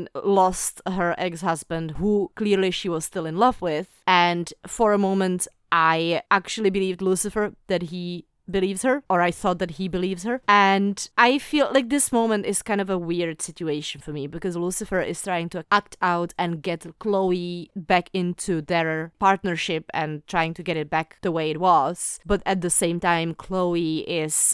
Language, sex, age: English, female, 30-49